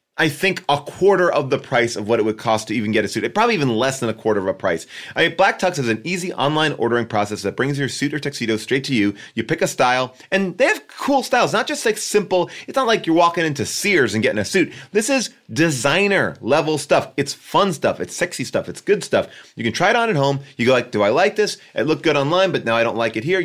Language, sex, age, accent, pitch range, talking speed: English, male, 30-49, American, 130-195 Hz, 280 wpm